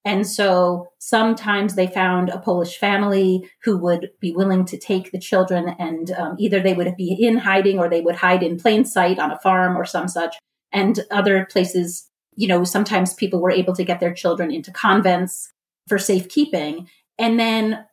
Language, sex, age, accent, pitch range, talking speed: English, female, 30-49, American, 180-210 Hz, 185 wpm